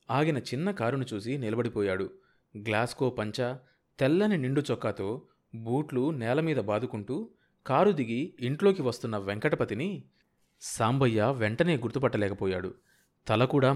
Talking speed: 100 wpm